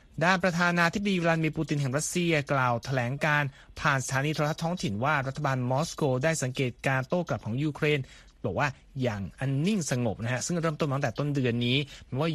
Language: Thai